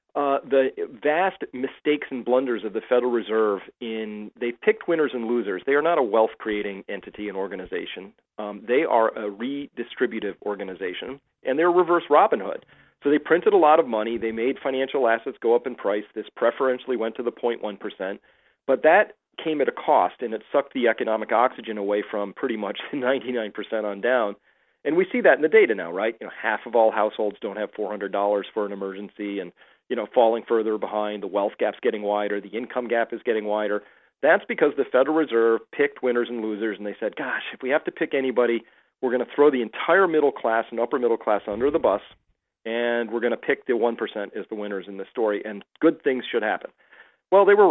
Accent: American